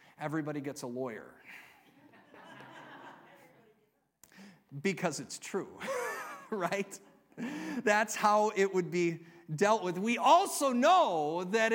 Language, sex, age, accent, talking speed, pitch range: English, male, 40-59, American, 95 wpm, 170-235 Hz